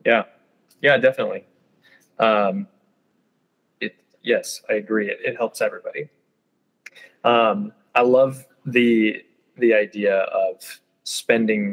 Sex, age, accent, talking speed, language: male, 20-39, American, 100 wpm, English